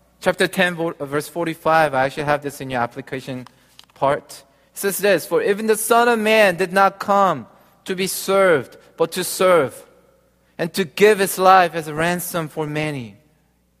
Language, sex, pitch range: Korean, male, 160-215 Hz